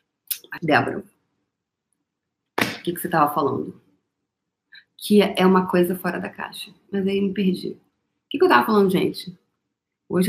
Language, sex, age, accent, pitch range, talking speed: Portuguese, female, 30-49, Brazilian, 175-210 Hz, 150 wpm